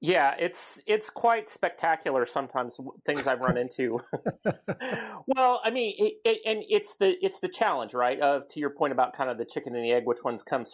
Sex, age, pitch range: male, 30-49, 130-205 Hz